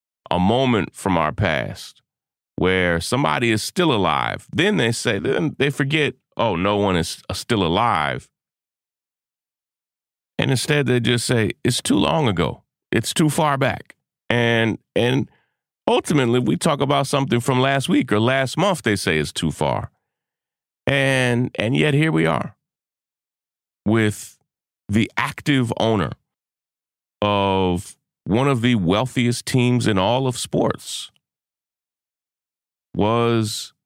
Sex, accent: male, American